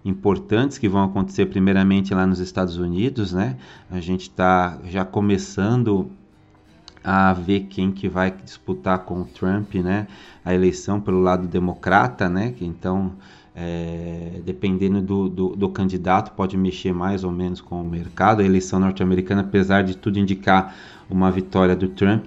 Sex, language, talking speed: male, Portuguese, 155 wpm